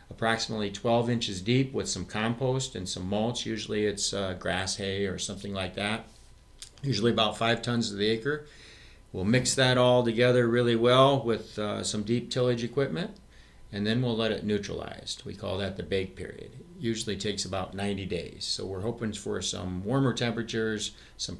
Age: 50-69